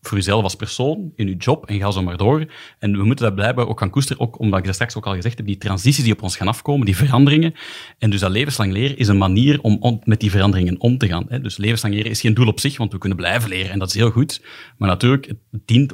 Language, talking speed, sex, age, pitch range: Dutch, 290 wpm, male, 40-59, 100-125 Hz